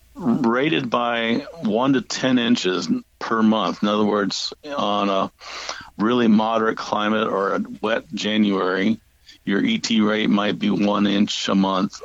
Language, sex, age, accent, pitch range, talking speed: English, male, 50-69, American, 105-125 Hz, 145 wpm